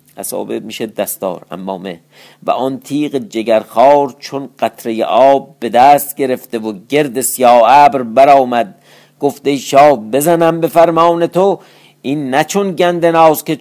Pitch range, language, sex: 120-165 Hz, Persian, male